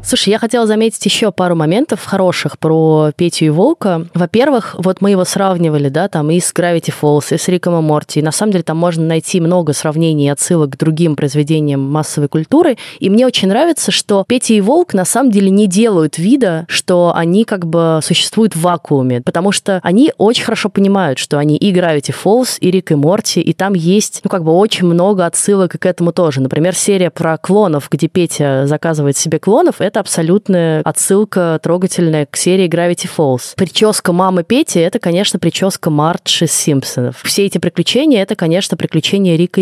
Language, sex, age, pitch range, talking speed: Russian, female, 20-39, 160-200 Hz, 190 wpm